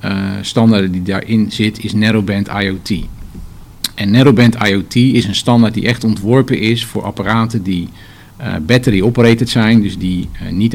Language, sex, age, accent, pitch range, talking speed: Dutch, male, 50-69, Dutch, 100-120 Hz, 160 wpm